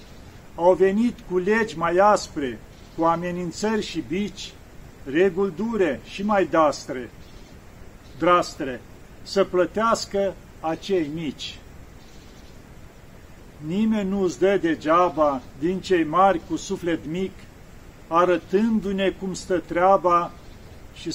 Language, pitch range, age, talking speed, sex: Romanian, 160-200 Hz, 40-59, 100 wpm, male